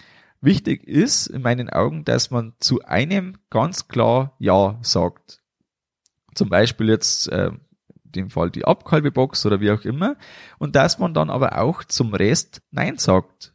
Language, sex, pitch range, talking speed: German, male, 105-150 Hz, 155 wpm